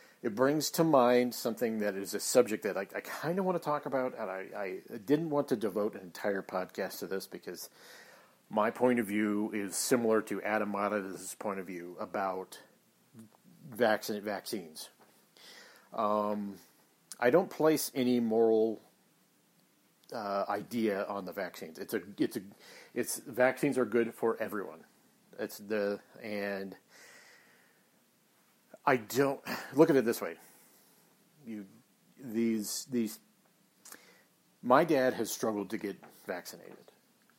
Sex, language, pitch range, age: male, English, 105-125 Hz, 40-59